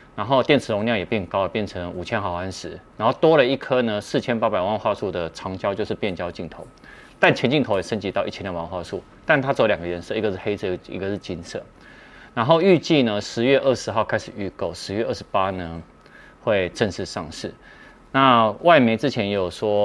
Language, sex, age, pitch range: Chinese, male, 30-49, 95-130 Hz